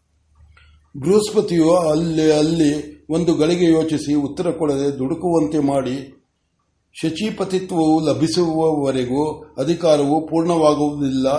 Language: Kannada